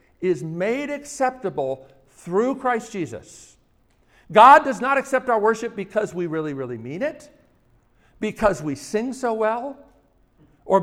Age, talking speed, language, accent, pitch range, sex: 50-69, 135 wpm, English, American, 125-200 Hz, male